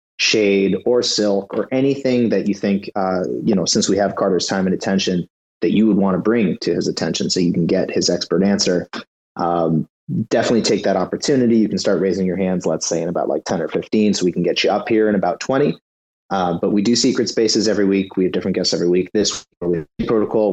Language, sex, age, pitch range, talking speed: English, male, 30-49, 90-110 Hz, 230 wpm